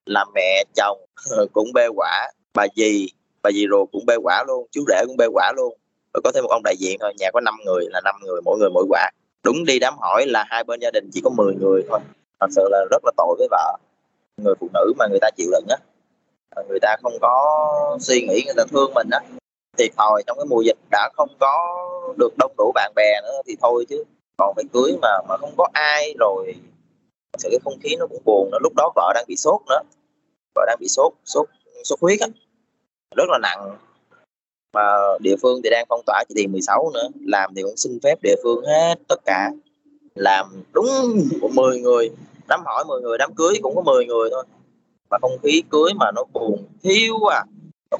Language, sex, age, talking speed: Vietnamese, male, 20-39, 230 wpm